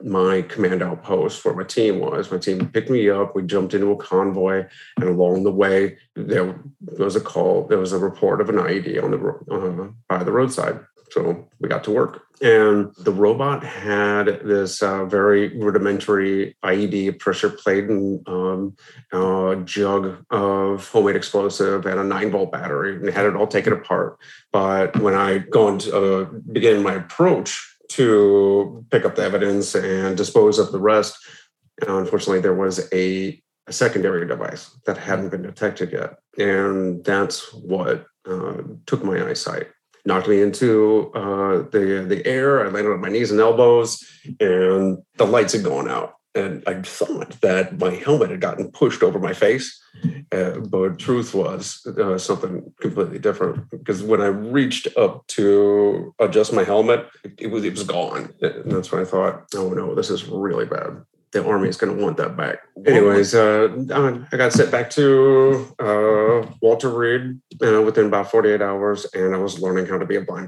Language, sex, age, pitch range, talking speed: English, male, 30-49, 95-115 Hz, 175 wpm